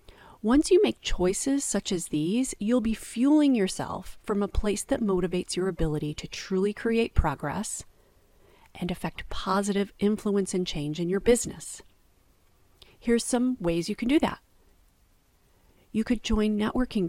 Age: 40-59